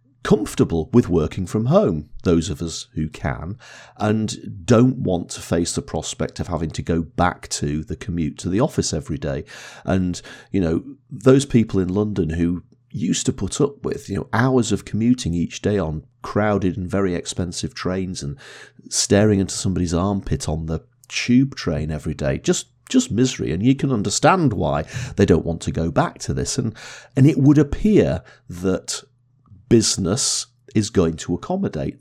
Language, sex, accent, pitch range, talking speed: English, male, British, 85-120 Hz, 175 wpm